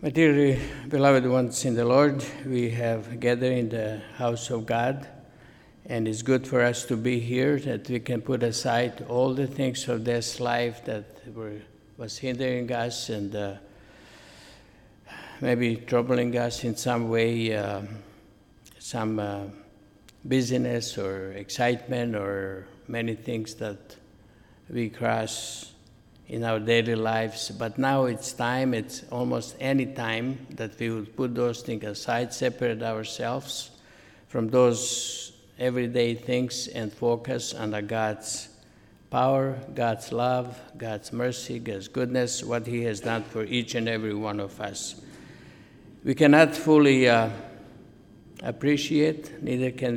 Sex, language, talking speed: male, English, 135 wpm